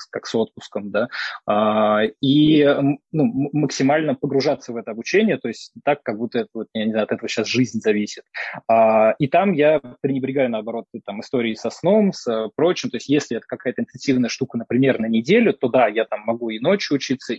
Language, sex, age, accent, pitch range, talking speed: Russian, male, 20-39, native, 115-140 Hz, 170 wpm